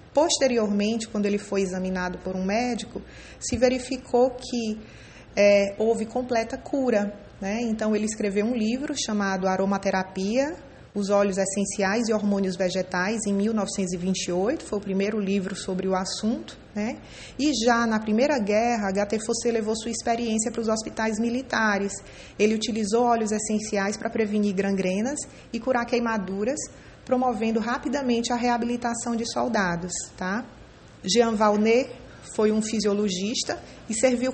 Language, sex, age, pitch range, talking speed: English, female, 20-39, 205-240 Hz, 135 wpm